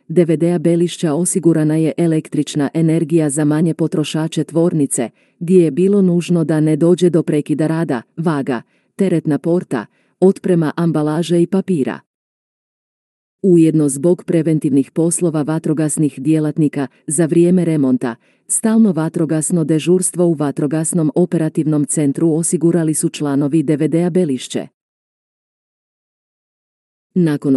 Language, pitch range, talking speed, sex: Croatian, 150-175 Hz, 105 wpm, female